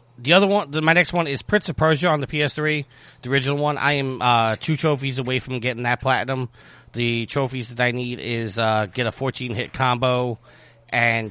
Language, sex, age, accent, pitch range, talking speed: English, male, 30-49, American, 115-130 Hz, 210 wpm